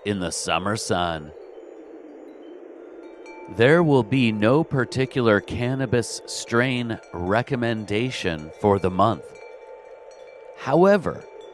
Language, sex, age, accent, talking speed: English, male, 40-59, American, 85 wpm